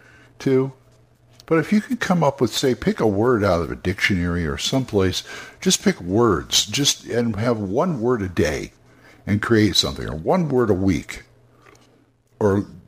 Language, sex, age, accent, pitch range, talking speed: English, male, 60-79, American, 100-130 Hz, 170 wpm